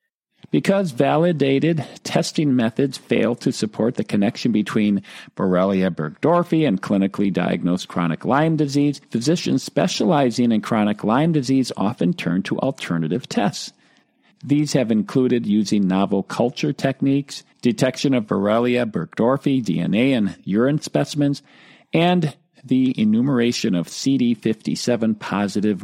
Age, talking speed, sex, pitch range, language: 50-69, 115 wpm, male, 110-155 Hz, English